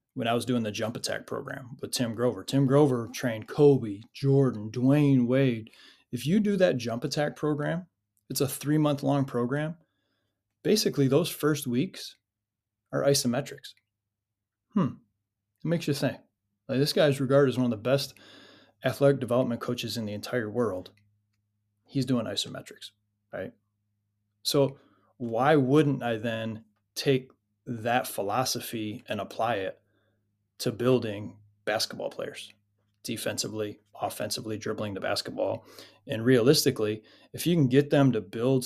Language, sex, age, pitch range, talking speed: English, male, 20-39, 110-140 Hz, 140 wpm